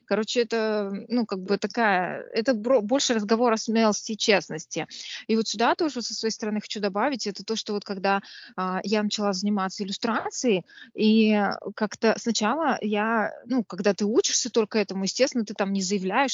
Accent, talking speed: native, 175 wpm